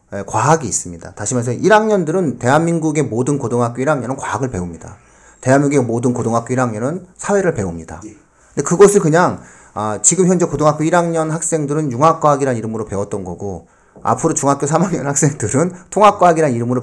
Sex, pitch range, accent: male, 110-170 Hz, native